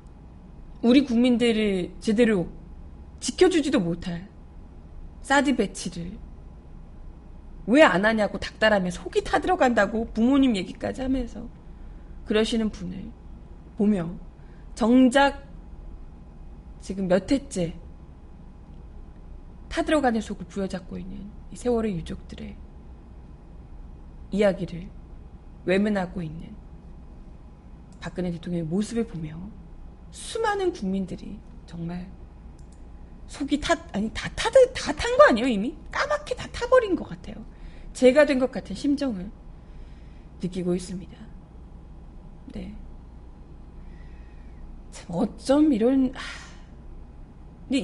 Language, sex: Korean, female